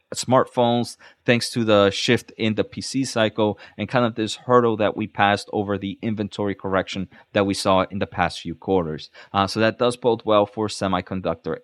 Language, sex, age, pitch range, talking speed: English, male, 20-39, 100-120 Hz, 190 wpm